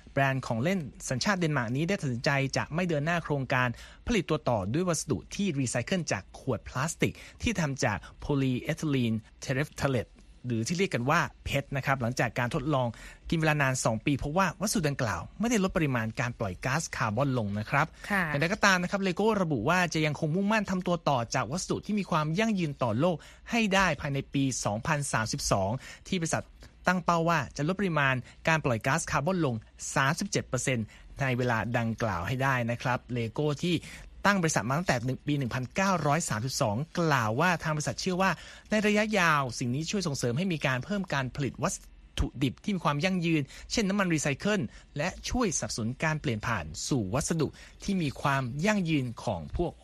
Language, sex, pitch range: Thai, male, 125-175 Hz